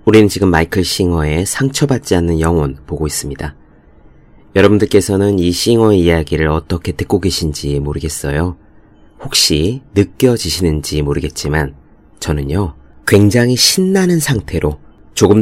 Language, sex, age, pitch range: Korean, male, 30-49, 80-110 Hz